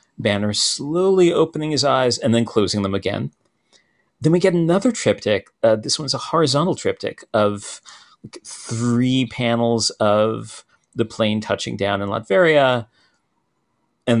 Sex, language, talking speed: male, English, 135 wpm